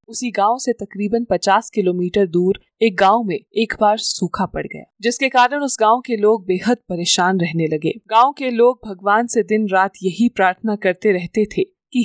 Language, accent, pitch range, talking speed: Hindi, native, 195-245 Hz, 190 wpm